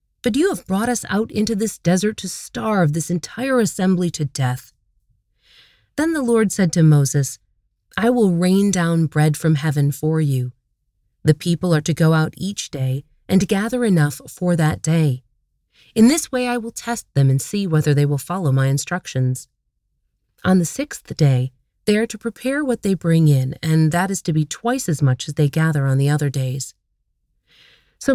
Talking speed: 190 wpm